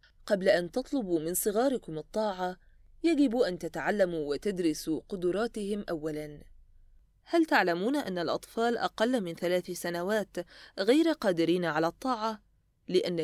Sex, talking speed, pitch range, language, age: female, 115 wpm, 165-225 Hz, Arabic, 20-39